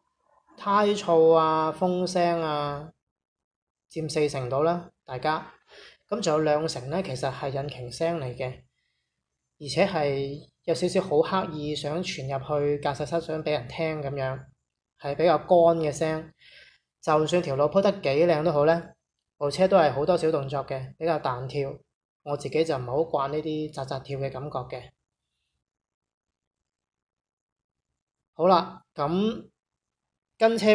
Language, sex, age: Chinese, male, 20-39